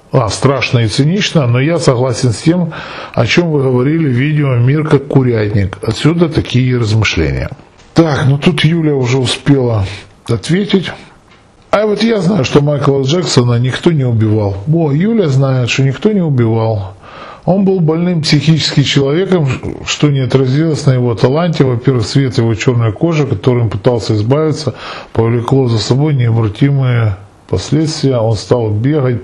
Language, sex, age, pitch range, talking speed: Russian, male, 10-29, 120-155 Hz, 150 wpm